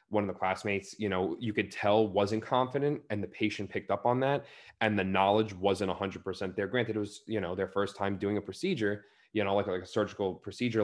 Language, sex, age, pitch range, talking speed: English, male, 20-39, 95-110 Hz, 245 wpm